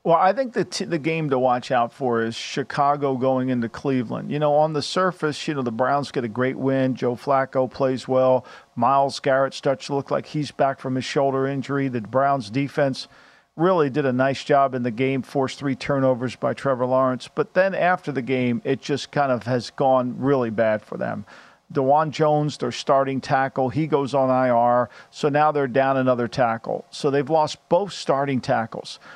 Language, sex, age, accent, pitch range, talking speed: English, male, 50-69, American, 130-155 Hz, 200 wpm